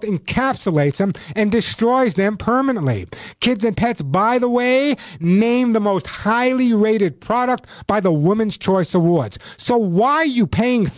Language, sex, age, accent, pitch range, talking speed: English, male, 50-69, American, 180-245 Hz, 155 wpm